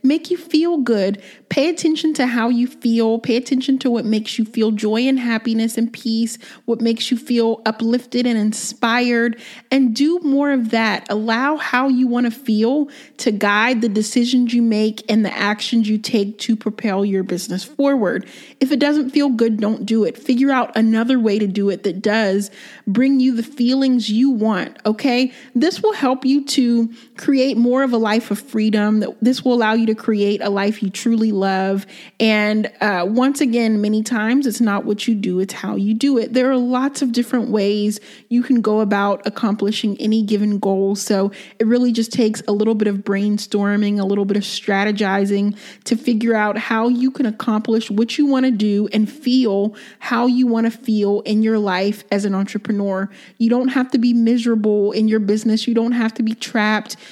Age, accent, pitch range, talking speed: 30-49, American, 210-250 Hz, 200 wpm